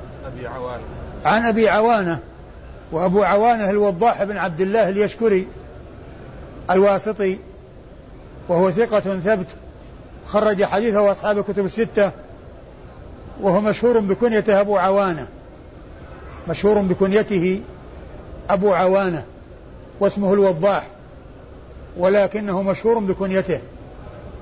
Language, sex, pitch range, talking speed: Arabic, male, 180-205 Hz, 80 wpm